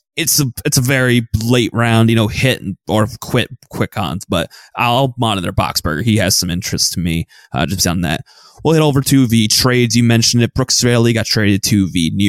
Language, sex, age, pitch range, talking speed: English, male, 20-39, 110-130 Hz, 220 wpm